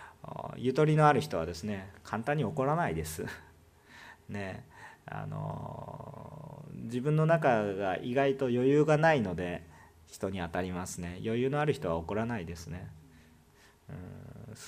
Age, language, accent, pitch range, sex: 40-59, Japanese, native, 105-155 Hz, male